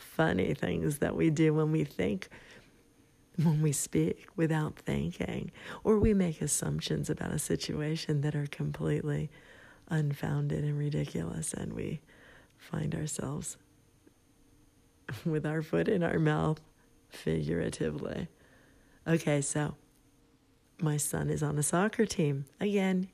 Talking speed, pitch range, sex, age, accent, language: 120 wpm, 145-170 Hz, female, 40-59, American, English